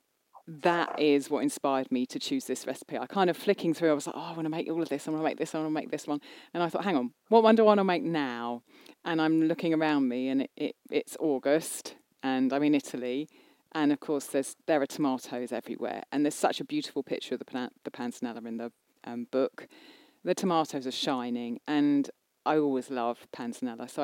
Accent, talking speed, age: British, 240 wpm, 30-49